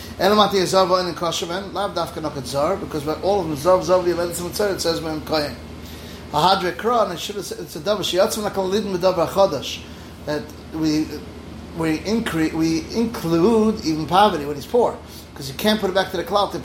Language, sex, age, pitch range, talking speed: English, male, 30-49, 150-185 Hz, 220 wpm